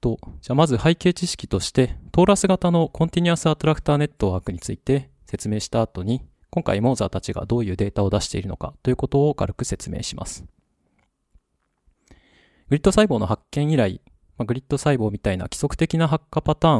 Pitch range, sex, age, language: 100-155 Hz, male, 20-39, Japanese